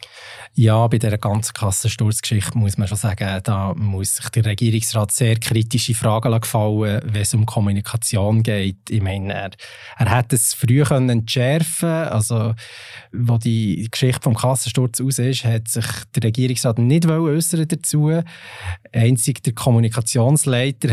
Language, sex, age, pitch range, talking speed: German, male, 20-39, 110-125 Hz, 145 wpm